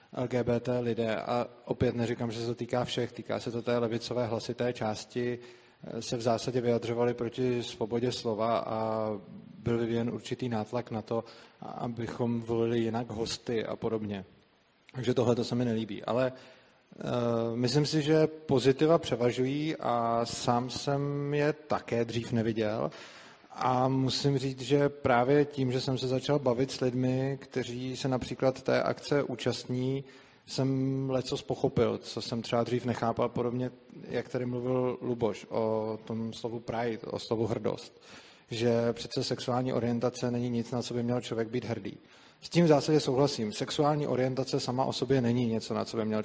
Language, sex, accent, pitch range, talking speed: Czech, male, native, 115-130 Hz, 160 wpm